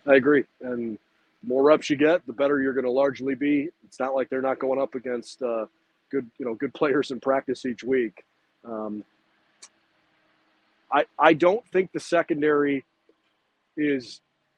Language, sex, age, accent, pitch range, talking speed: English, male, 40-59, American, 120-155 Hz, 170 wpm